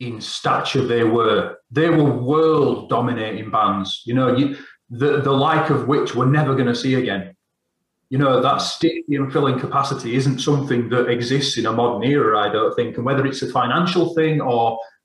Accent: British